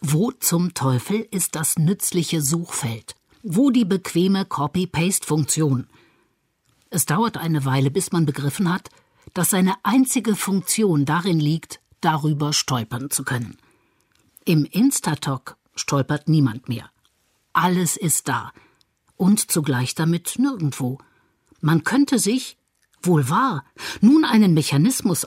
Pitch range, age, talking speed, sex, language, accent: 145-200 Hz, 50-69, 115 wpm, female, German, German